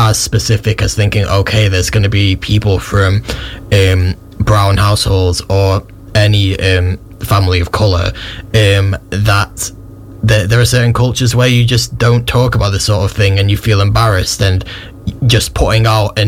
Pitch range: 95-115 Hz